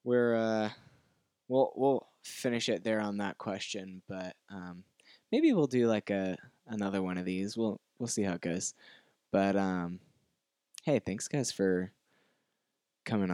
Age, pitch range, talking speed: 10-29, 95-115 Hz, 155 wpm